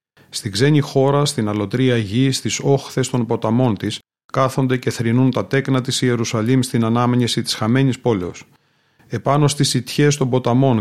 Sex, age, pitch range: male, 40-59, 115-135 Hz